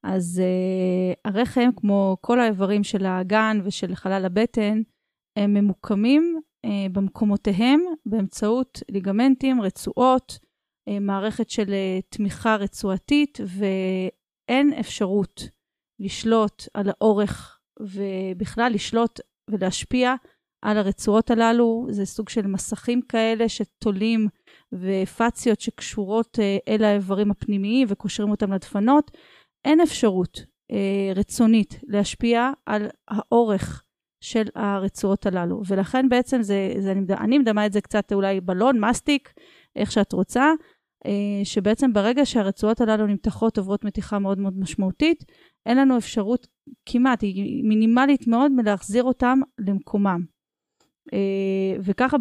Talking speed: 105 wpm